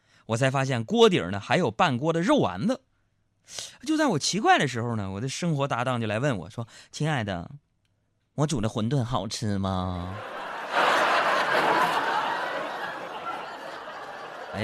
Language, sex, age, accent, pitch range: Chinese, male, 20-39, native, 100-155 Hz